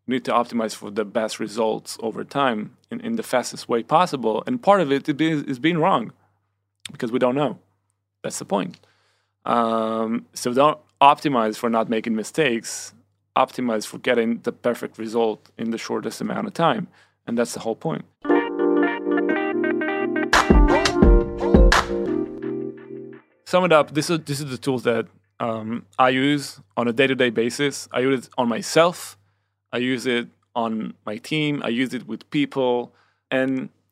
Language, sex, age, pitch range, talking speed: Hebrew, male, 20-39, 110-140 Hz, 155 wpm